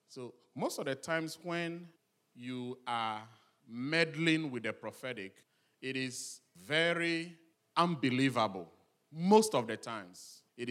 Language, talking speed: English, 120 wpm